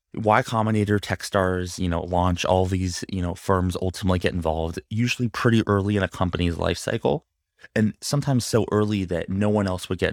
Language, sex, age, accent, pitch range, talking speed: English, male, 20-39, American, 85-105 Hz, 190 wpm